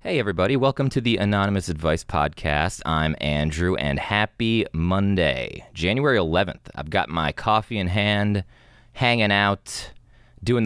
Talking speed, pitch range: 135 wpm, 90-120 Hz